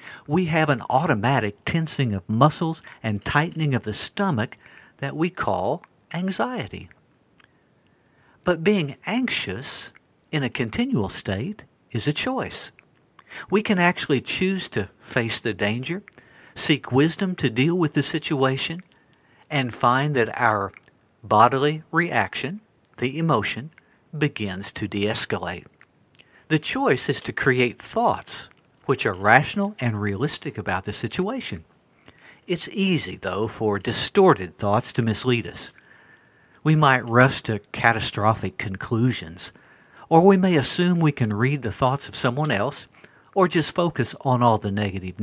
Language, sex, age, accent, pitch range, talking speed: English, male, 60-79, American, 110-165 Hz, 135 wpm